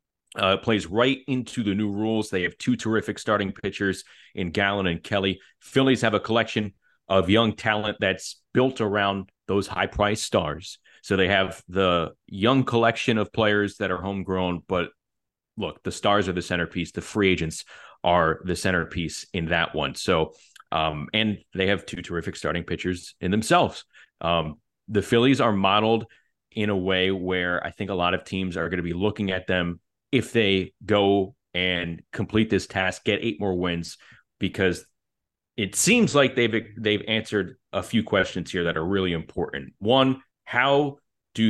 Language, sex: English, male